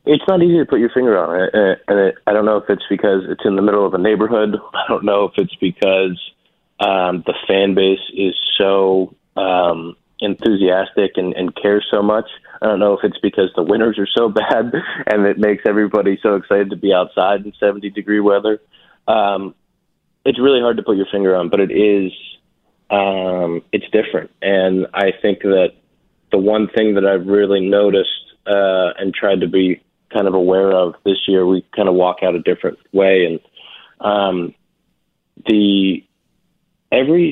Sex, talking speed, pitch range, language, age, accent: male, 180 wpm, 95-105 Hz, English, 20-39, American